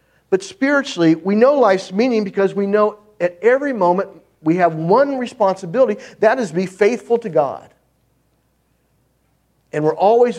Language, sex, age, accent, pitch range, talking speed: English, male, 50-69, American, 155-225 Hz, 145 wpm